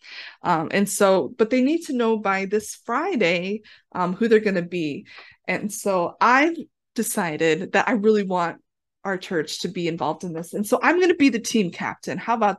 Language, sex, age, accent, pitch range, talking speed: English, female, 20-39, American, 185-235 Hz, 205 wpm